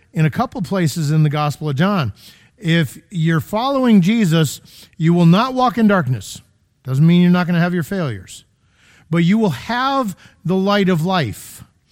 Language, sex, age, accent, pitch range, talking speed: English, male, 50-69, American, 140-195 Hz, 185 wpm